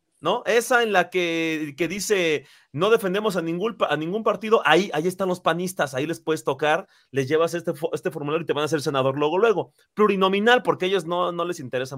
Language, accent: Spanish, Mexican